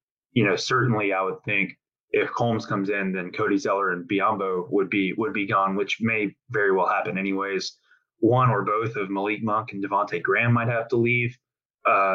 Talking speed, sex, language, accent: 200 wpm, male, English, American